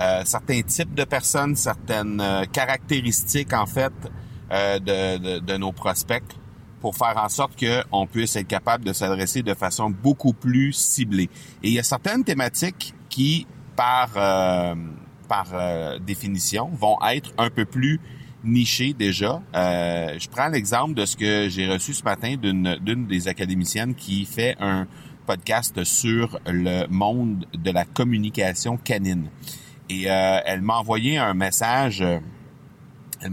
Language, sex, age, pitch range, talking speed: French, male, 30-49, 95-120 Hz, 155 wpm